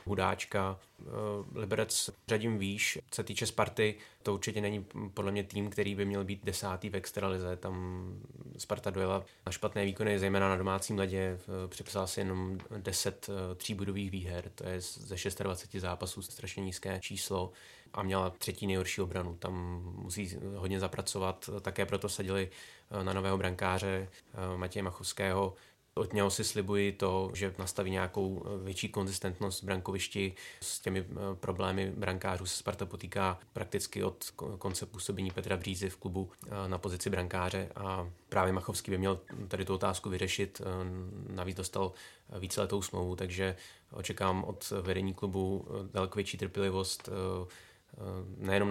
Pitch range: 95-100 Hz